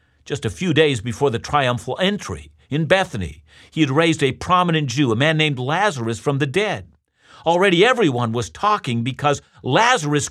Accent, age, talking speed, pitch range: American, 50-69, 170 wpm, 100-150 Hz